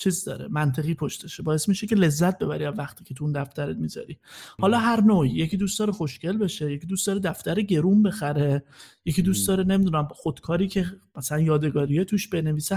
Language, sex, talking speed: Persian, male, 190 wpm